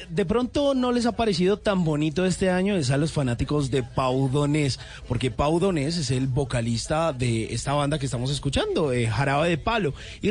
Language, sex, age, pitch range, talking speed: Spanish, male, 30-49, 130-155 Hz, 190 wpm